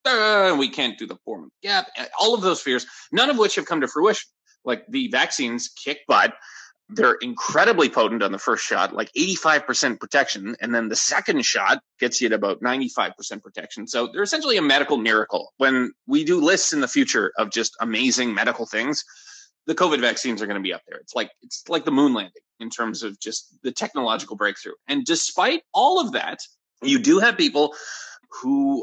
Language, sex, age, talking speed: English, male, 30-49, 205 wpm